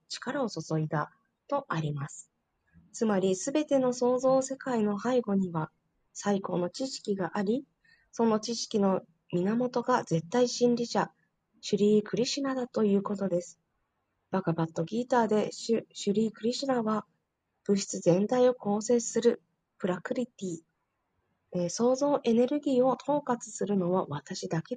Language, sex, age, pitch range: Japanese, female, 20-39, 175-250 Hz